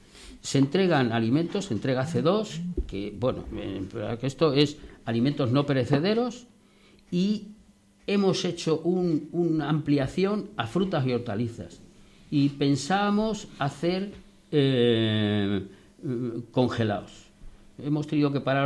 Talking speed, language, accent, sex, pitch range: 105 wpm, Spanish, Spanish, male, 115-180 Hz